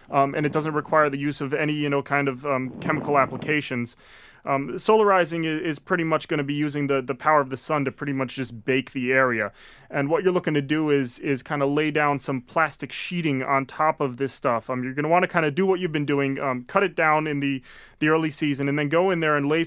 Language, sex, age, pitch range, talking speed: English, male, 30-49, 140-170 Hz, 265 wpm